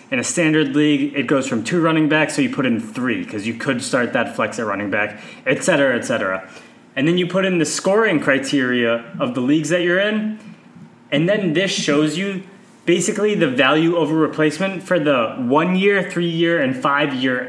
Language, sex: English, male